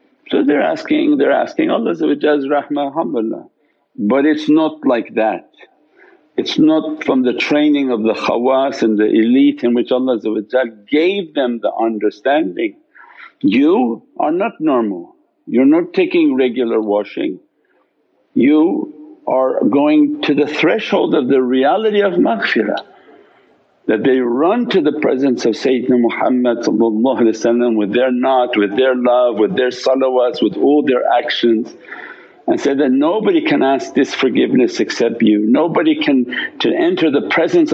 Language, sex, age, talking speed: English, male, 60-79, 140 wpm